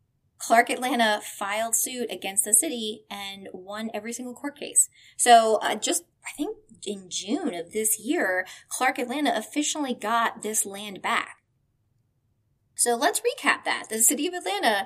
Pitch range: 195-255 Hz